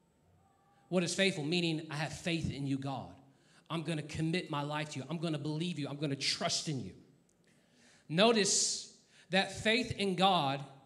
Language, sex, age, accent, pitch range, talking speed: English, male, 40-59, American, 170-220 Hz, 190 wpm